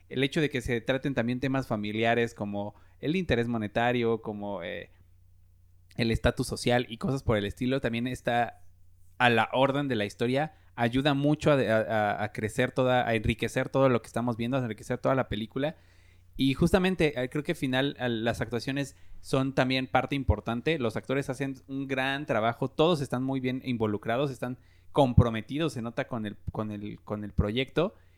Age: 30-49